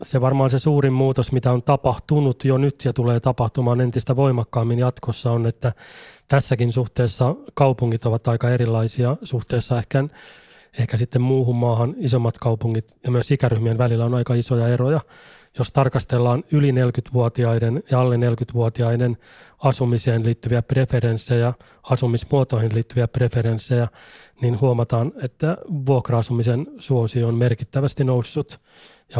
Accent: native